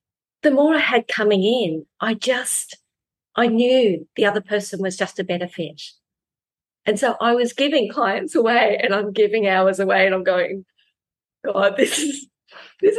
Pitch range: 195-240 Hz